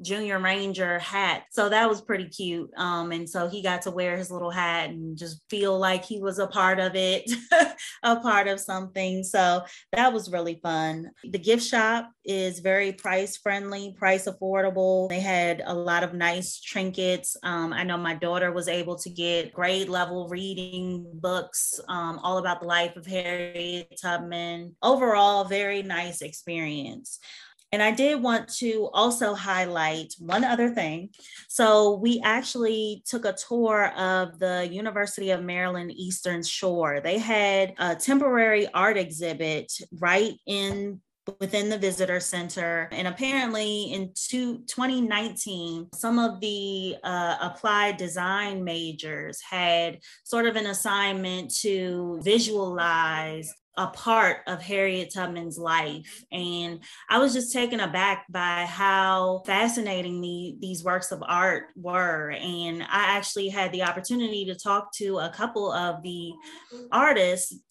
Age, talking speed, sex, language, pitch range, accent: 20-39, 145 wpm, female, English, 175-205 Hz, American